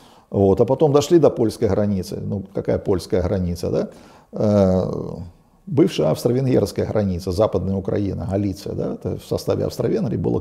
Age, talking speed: 50-69, 140 wpm